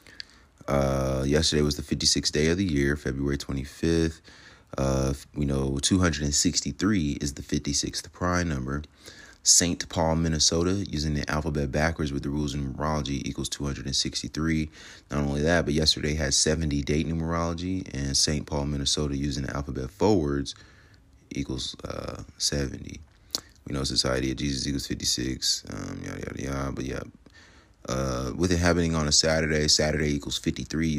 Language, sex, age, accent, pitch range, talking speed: English, male, 30-49, American, 70-80 Hz, 150 wpm